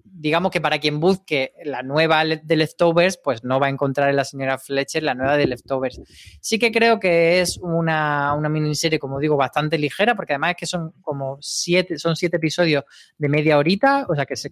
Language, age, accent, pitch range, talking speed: Spanish, 20-39, Spanish, 140-170 Hz, 210 wpm